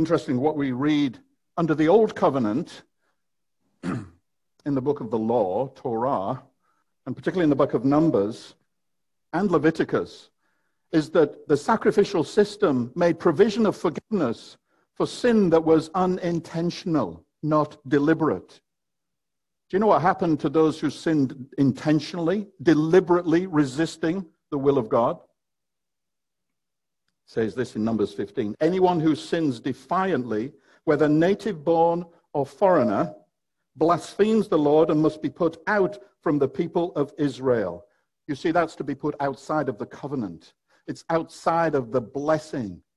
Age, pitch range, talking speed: 60-79, 145-175 Hz, 135 wpm